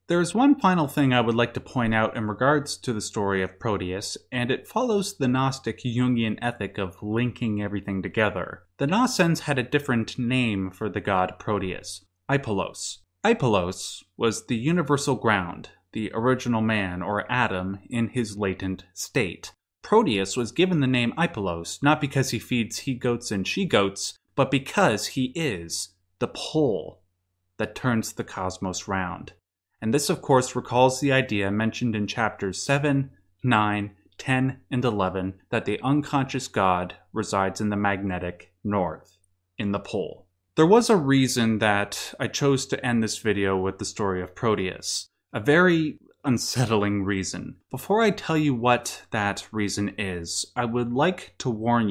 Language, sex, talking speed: English, male, 160 wpm